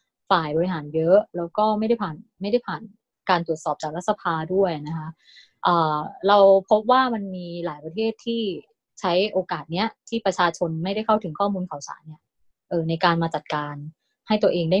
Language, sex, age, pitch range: Thai, female, 20-39, 165-220 Hz